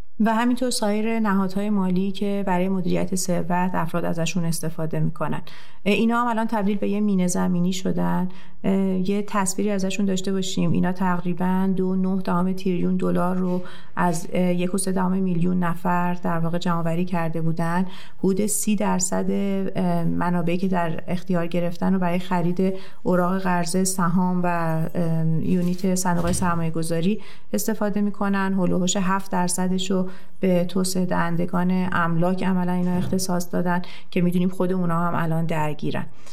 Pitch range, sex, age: 175-195 Hz, female, 40-59